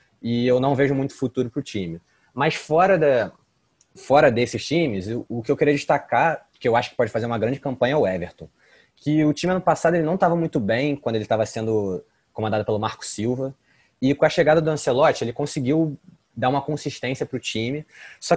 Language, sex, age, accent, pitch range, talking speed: Portuguese, male, 20-39, Brazilian, 110-145 Hz, 210 wpm